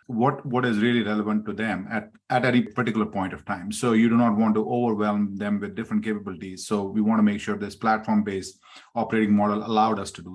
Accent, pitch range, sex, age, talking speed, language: Indian, 100-115 Hz, male, 30-49, 225 wpm, English